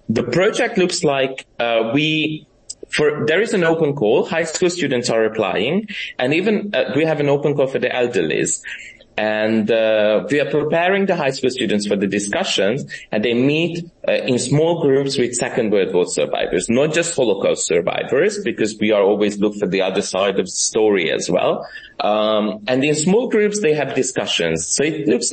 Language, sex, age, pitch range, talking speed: English, male, 30-49, 110-160 Hz, 190 wpm